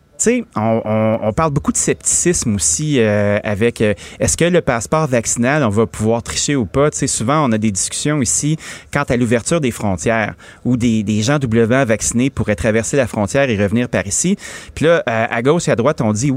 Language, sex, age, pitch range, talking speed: French, male, 30-49, 110-160 Hz, 225 wpm